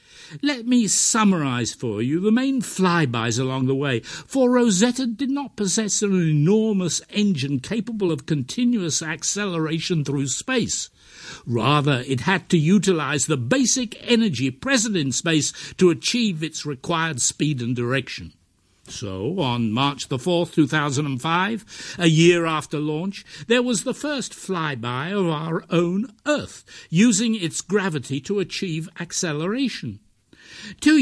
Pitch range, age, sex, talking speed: 145-215 Hz, 60-79, male, 135 wpm